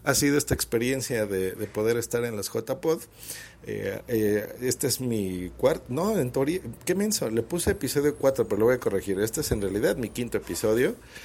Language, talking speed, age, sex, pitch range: Spanish, 205 wpm, 50-69, male, 110-145 Hz